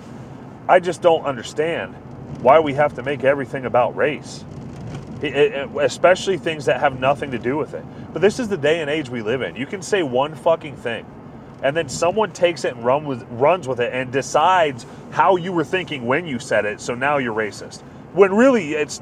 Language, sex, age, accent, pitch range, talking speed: English, male, 30-49, American, 130-180 Hz, 200 wpm